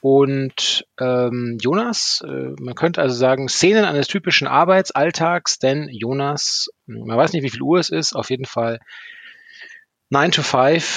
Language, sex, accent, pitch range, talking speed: German, male, German, 115-160 Hz, 155 wpm